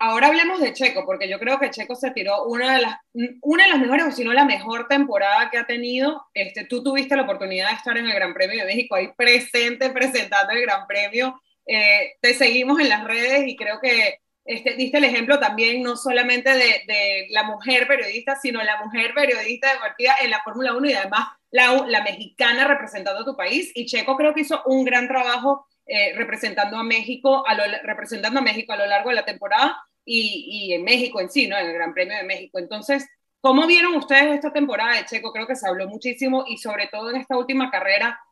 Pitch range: 215-275 Hz